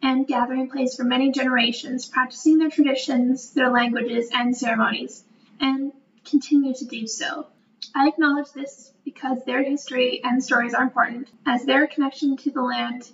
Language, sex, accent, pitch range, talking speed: English, female, American, 245-285 Hz, 155 wpm